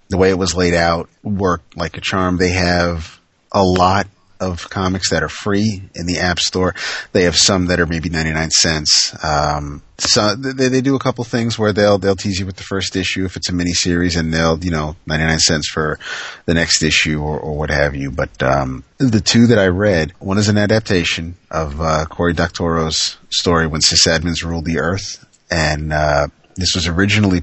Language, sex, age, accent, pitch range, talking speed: English, male, 30-49, American, 80-95 Hz, 210 wpm